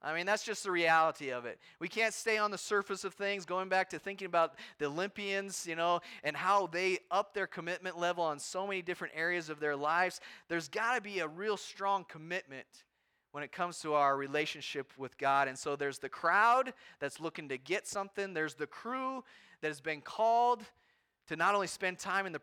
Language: English